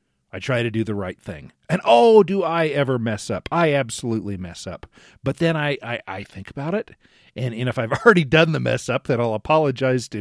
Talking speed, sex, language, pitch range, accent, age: 230 wpm, male, English, 115-170 Hz, American, 40-59